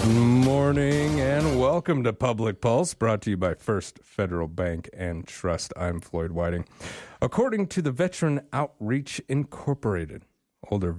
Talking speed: 140 wpm